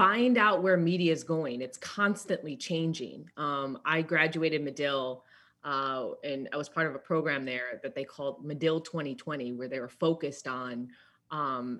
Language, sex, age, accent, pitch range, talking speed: English, female, 20-39, American, 150-175 Hz, 170 wpm